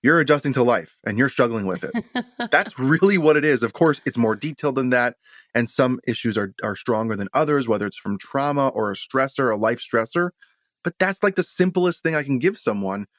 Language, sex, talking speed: English, male, 225 wpm